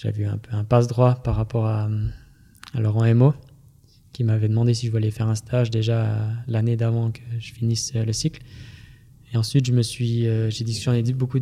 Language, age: French, 20-39